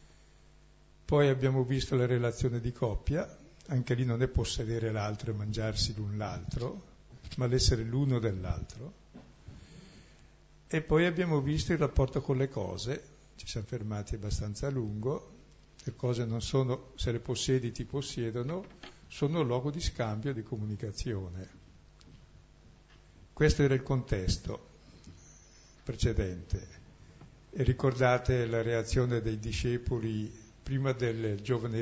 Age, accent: 60-79, native